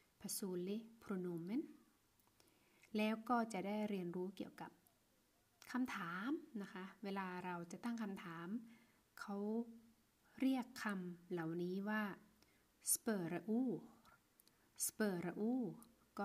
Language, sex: Thai, female